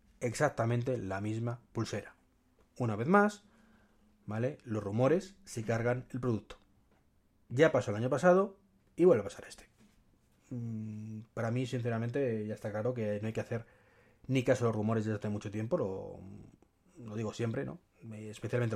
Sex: male